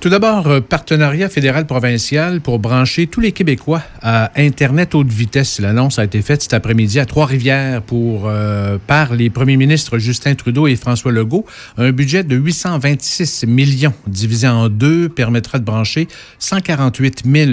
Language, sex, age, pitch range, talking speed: French, male, 50-69, 120-150 Hz, 145 wpm